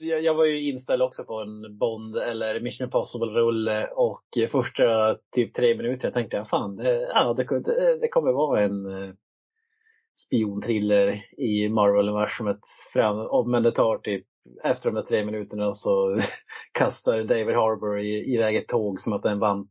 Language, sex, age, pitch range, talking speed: Swedish, male, 30-49, 105-160 Hz, 165 wpm